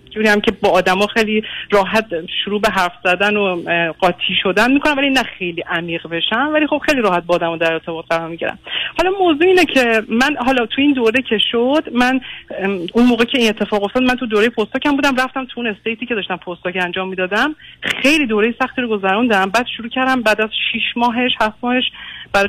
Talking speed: 205 wpm